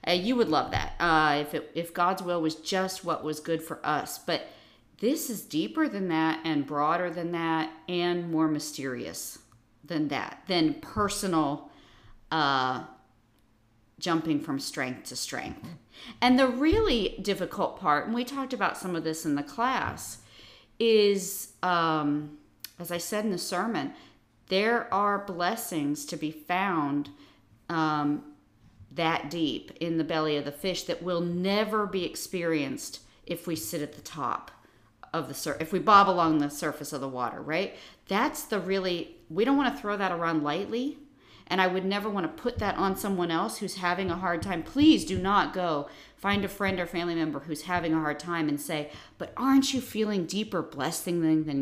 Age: 40-59